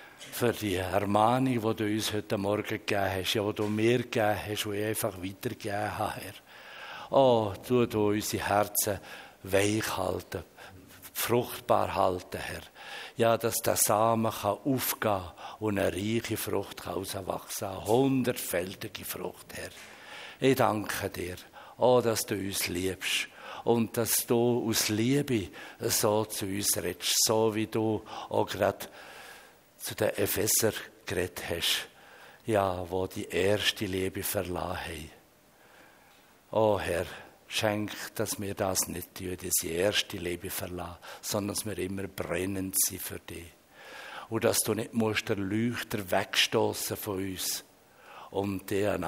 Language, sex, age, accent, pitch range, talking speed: German, male, 60-79, Swiss, 95-110 Hz, 135 wpm